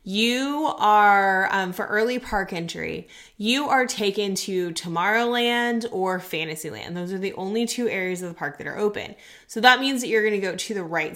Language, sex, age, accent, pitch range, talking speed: English, female, 20-39, American, 185-240 Hz, 200 wpm